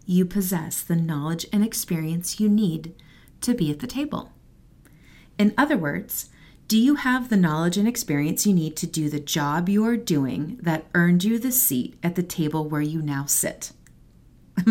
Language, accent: English, American